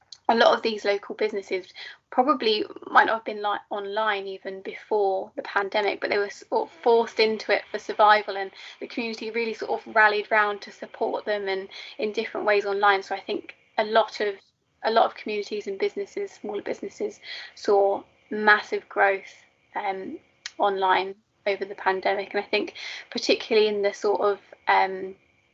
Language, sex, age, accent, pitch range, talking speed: English, female, 20-39, British, 200-235 Hz, 170 wpm